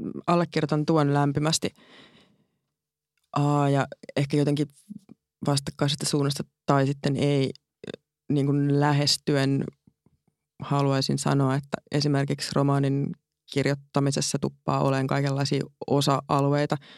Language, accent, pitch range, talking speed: Finnish, native, 135-150 Hz, 85 wpm